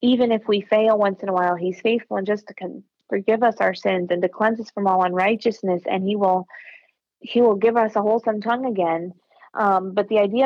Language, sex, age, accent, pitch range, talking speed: English, female, 30-49, American, 190-225 Hz, 230 wpm